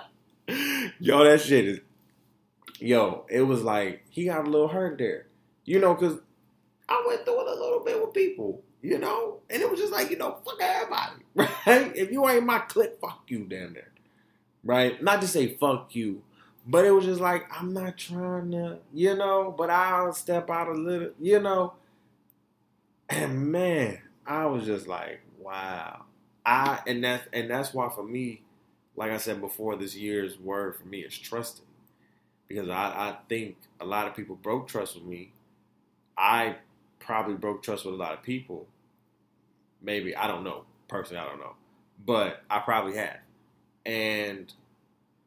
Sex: male